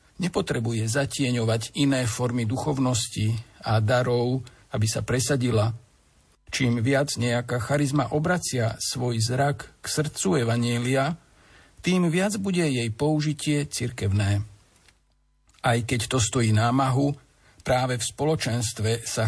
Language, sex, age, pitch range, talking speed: Slovak, male, 50-69, 110-145 Hz, 110 wpm